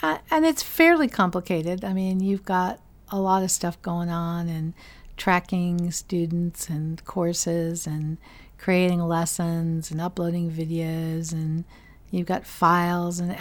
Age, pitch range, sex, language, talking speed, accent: 50-69, 170-200 Hz, female, English, 140 wpm, American